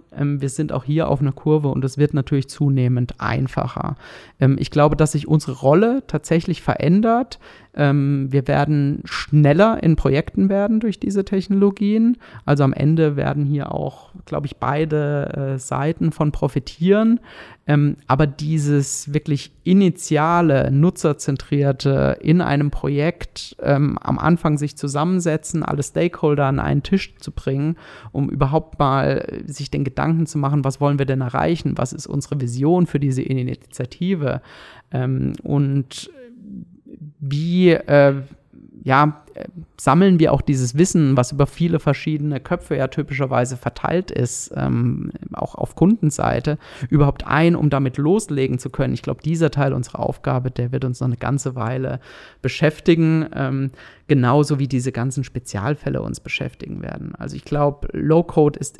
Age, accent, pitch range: 30-49, German, 135-160 Hz